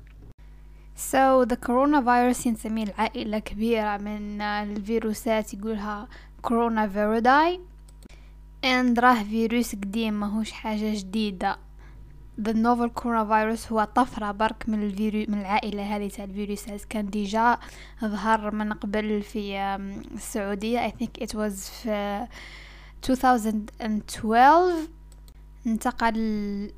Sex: female